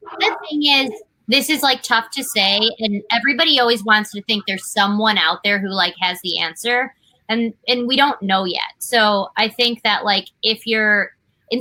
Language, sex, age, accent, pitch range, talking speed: English, female, 20-39, American, 200-245 Hz, 195 wpm